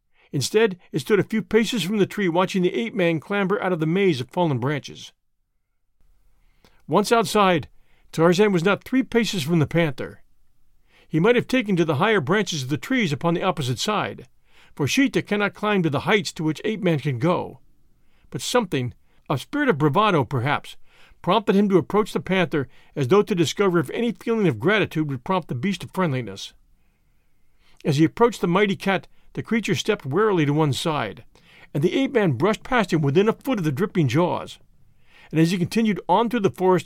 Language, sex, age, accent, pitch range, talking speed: English, male, 50-69, American, 155-210 Hz, 195 wpm